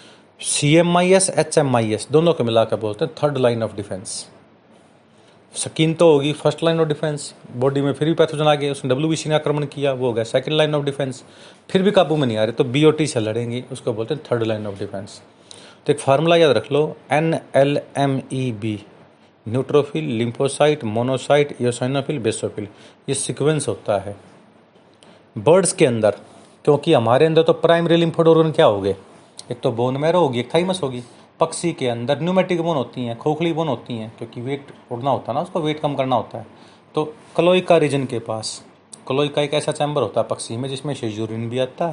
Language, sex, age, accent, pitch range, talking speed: Hindi, male, 30-49, native, 120-155 Hz, 195 wpm